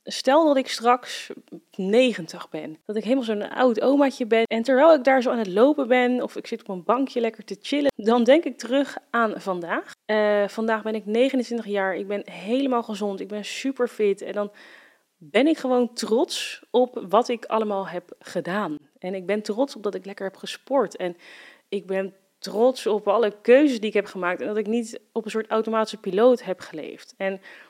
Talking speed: 210 wpm